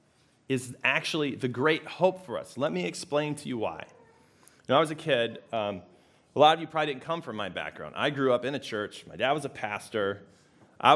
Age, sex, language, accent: 30-49, male, English, American